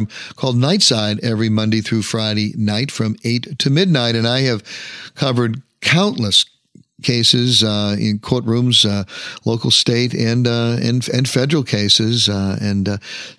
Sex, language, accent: male, English, American